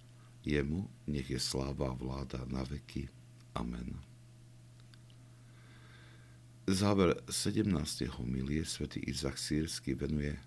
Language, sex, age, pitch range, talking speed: Slovak, male, 60-79, 65-100 Hz, 90 wpm